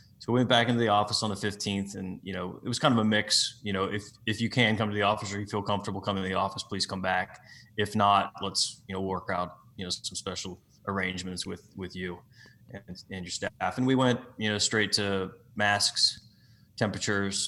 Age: 20-39